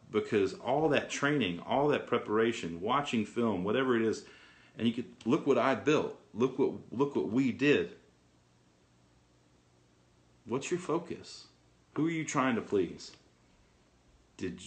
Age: 40-59